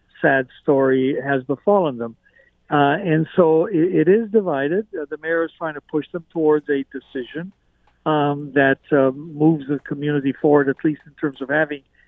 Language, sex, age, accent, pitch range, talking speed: English, male, 60-79, American, 145-175 Hz, 180 wpm